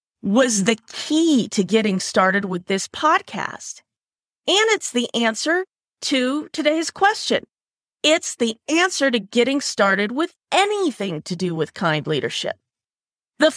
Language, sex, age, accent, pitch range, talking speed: English, female, 40-59, American, 200-320 Hz, 135 wpm